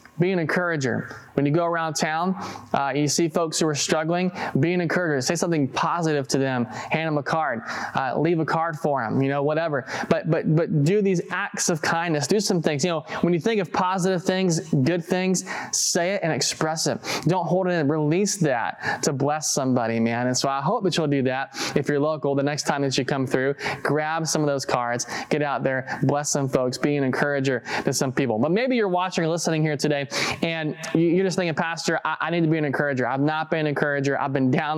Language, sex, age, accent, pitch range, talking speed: English, male, 20-39, American, 140-165 Hz, 230 wpm